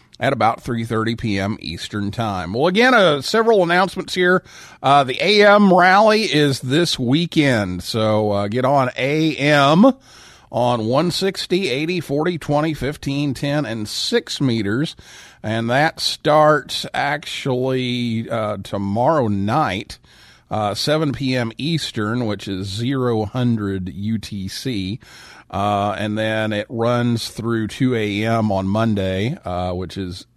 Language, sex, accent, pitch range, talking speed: English, male, American, 105-155 Hz, 120 wpm